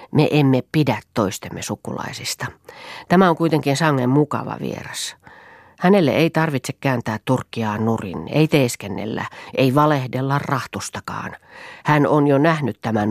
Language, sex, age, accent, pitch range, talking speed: Finnish, female, 40-59, native, 120-160 Hz, 125 wpm